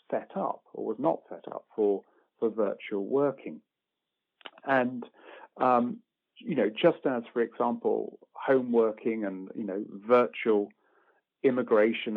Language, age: English, 40-59